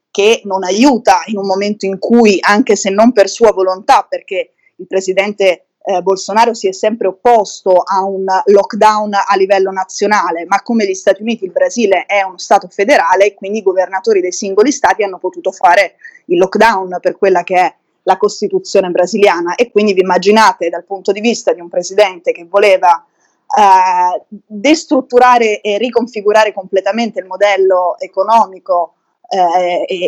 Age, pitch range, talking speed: 20-39, 185-235 Hz, 160 wpm